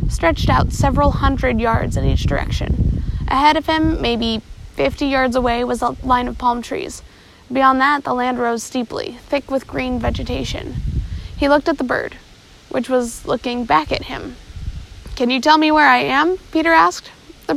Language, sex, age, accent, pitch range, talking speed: English, female, 20-39, American, 240-285 Hz, 180 wpm